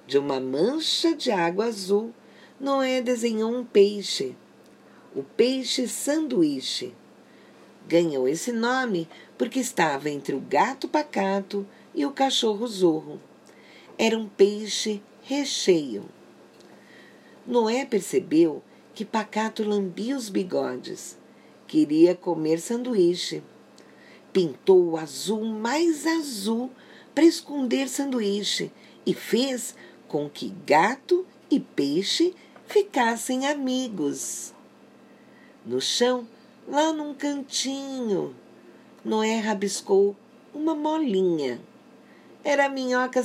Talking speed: 95 wpm